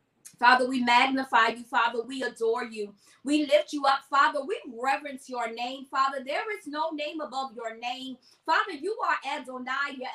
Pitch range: 295-375 Hz